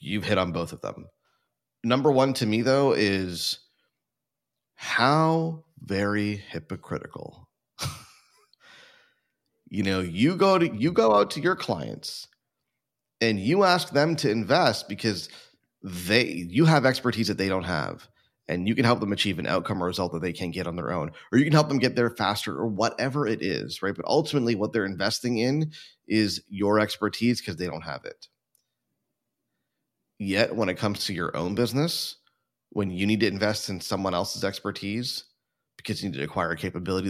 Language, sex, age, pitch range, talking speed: English, male, 30-49, 95-130 Hz, 175 wpm